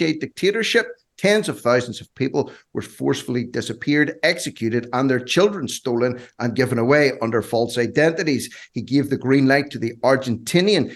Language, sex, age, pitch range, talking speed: English, male, 50-69, 120-150 Hz, 155 wpm